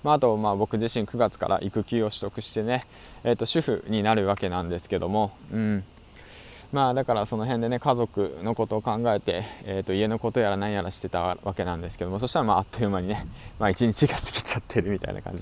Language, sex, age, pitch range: Japanese, male, 20-39, 95-115 Hz